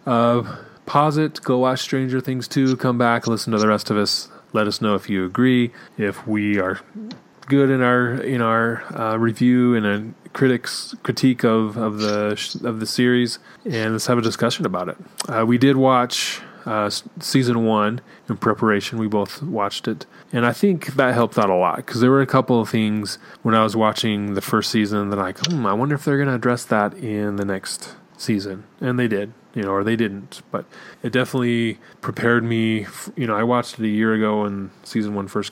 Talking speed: 215 wpm